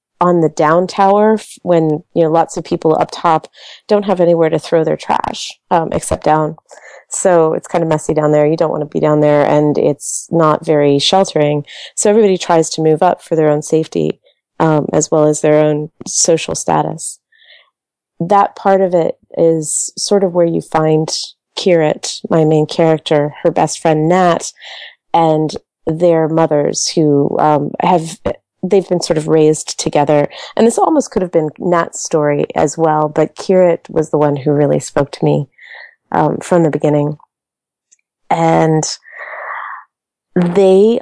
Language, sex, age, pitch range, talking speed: English, female, 30-49, 155-185 Hz, 170 wpm